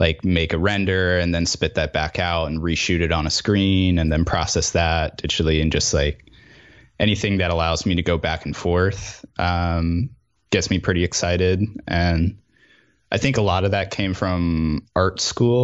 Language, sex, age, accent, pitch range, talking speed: English, male, 20-39, American, 80-95 Hz, 190 wpm